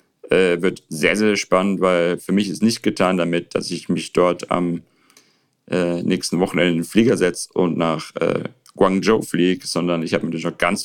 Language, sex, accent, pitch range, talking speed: German, male, German, 85-95 Hz, 195 wpm